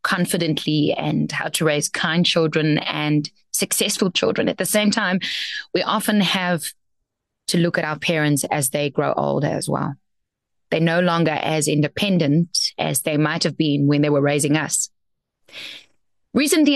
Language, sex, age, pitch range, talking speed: English, female, 20-39, 150-185 Hz, 155 wpm